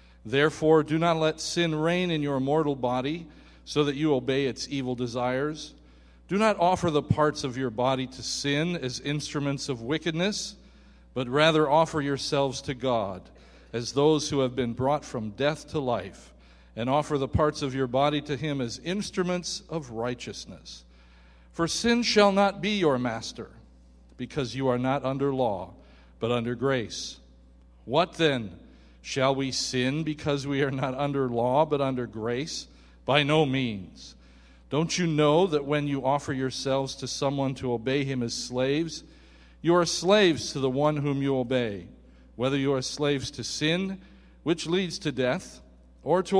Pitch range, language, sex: 120-155 Hz, English, male